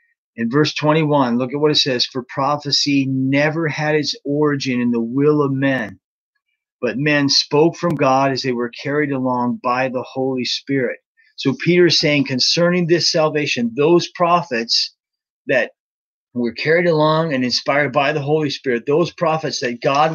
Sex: male